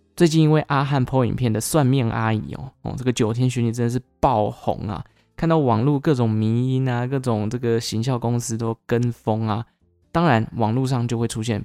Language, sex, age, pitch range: Chinese, male, 10-29, 110-130 Hz